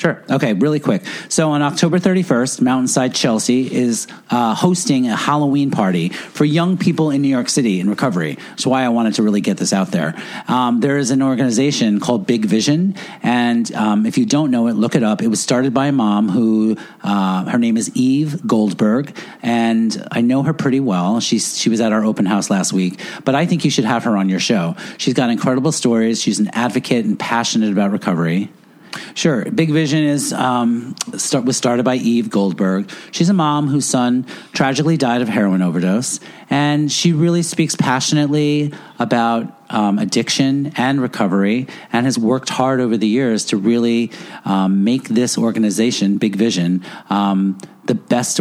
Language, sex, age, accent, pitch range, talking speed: English, male, 40-59, American, 105-145 Hz, 185 wpm